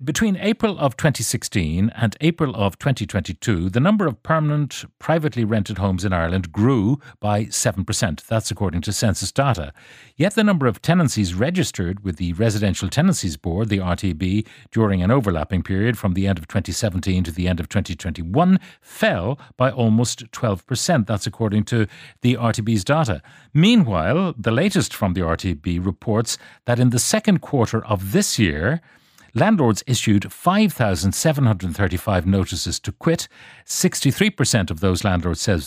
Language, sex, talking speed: English, male, 150 wpm